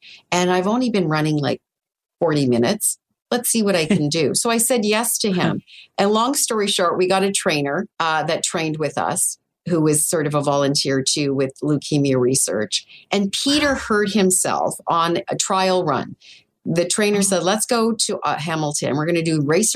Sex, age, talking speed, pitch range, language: female, 40-59, 195 wpm, 160-210 Hz, English